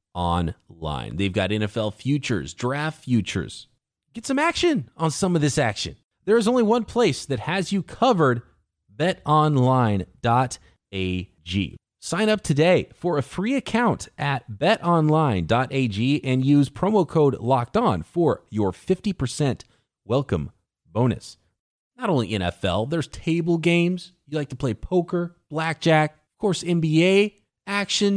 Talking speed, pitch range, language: 125 wpm, 120-175 Hz, English